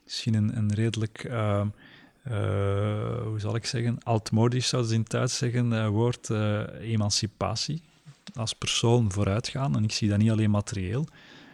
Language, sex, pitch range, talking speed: Dutch, male, 105-120 Hz, 155 wpm